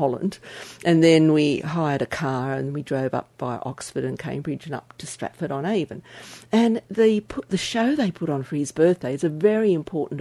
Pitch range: 140-190 Hz